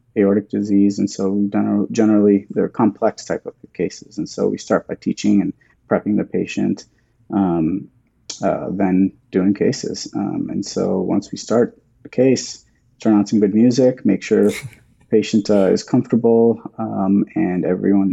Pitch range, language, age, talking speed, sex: 100-110 Hz, English, 30-49, 160 wpm, male